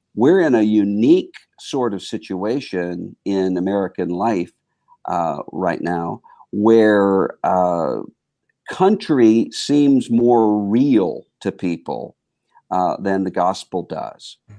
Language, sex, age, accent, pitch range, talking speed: English, male, 50-69, American, 90-110 Hz, 105 wpm